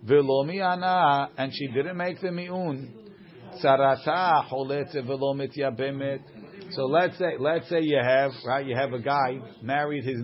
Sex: male